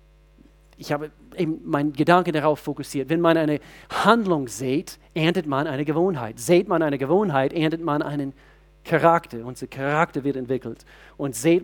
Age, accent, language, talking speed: 40-59, German, German, 155 wpm